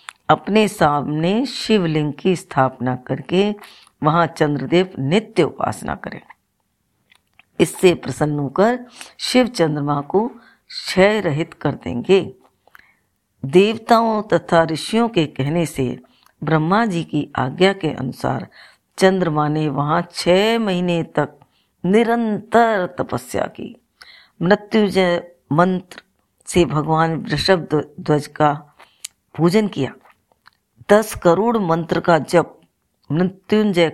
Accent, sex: native, female